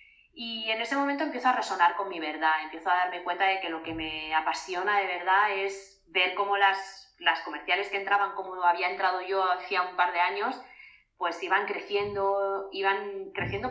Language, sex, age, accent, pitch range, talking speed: Spanish, female, 20-39, Spanish, 170-205 Hz, 195 wpm